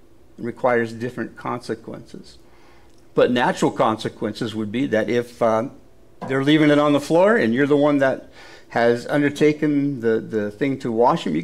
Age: 60-79